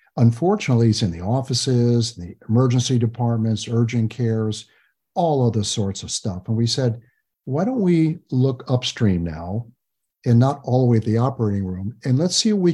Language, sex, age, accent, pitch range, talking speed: English, male, 50-69, American, 110-140 Hz, 180 wpm